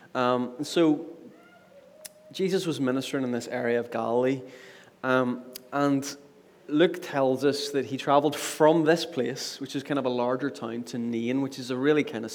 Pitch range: 120-145 Hz